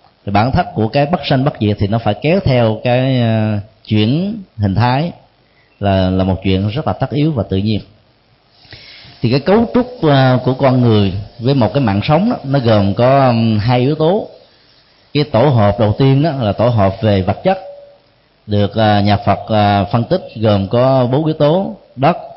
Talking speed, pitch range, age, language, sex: 190 wpm, 105-145 Hz, 20-39, Vietnamese, male